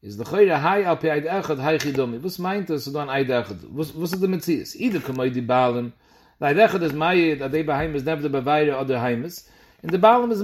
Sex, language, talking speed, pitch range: male, English, 205 wpm, 130-175 Hz